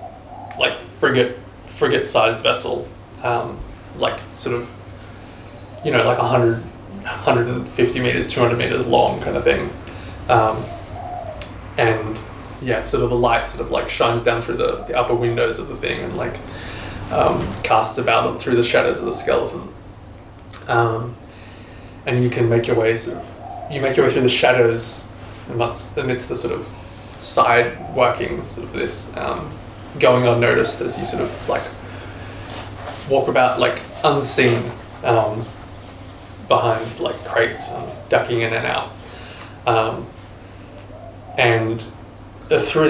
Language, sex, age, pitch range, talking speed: English, male, 20-39, 100-120 Hz, 145 wpm